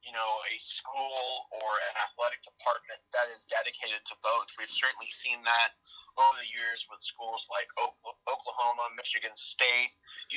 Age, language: 30-49, English